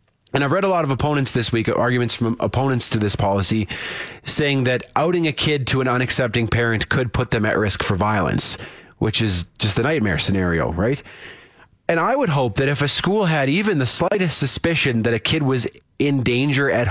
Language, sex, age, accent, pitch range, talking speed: English, male, 30-49, American, 115-150 Hz, 205 wpm